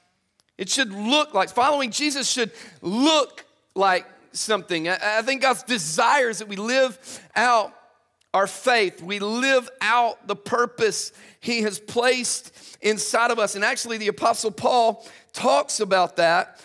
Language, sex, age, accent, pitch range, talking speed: English, male, 40-59, American, 205-250 Hz, 150 wpm